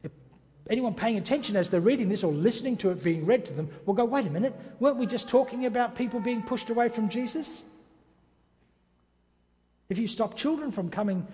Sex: male